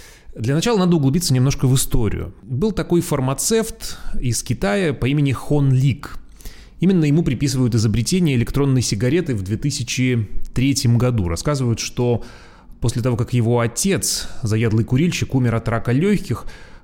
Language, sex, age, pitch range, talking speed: Russian, male, 30-49, 105-145 Hz, 135 wpm